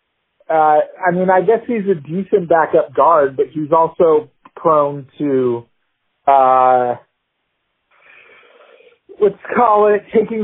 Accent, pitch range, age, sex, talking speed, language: American, 135-175 Hz, 40-59, male, 115 wpm, English